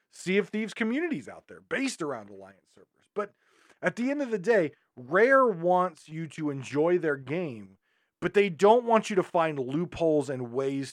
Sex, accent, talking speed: male, American, 185 wpm